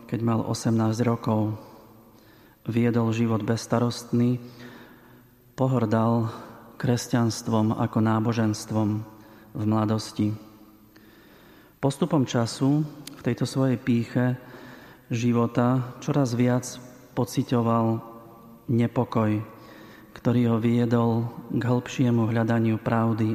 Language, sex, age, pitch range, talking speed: Slovak, male, 40-59, 115-120 Hz, 80 wpm